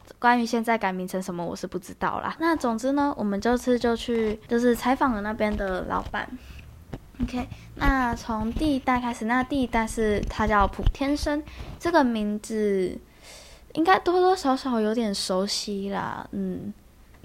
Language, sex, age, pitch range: Chinese, female, 10-29, 200-255 Hz